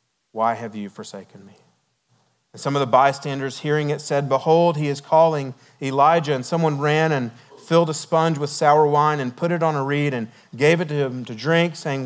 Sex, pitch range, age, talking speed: male, 130-155 Hz, 40-59, 210 wpm